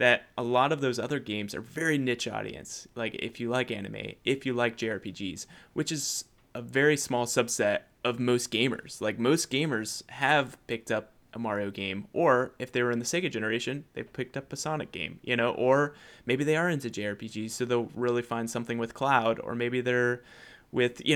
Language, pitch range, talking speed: English, 115-135 Hz, 205 wpm